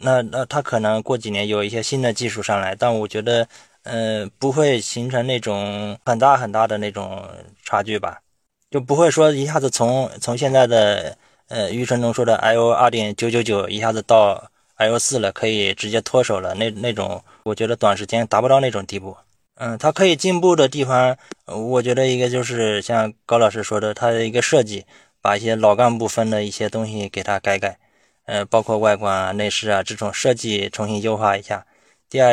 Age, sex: 20-39, male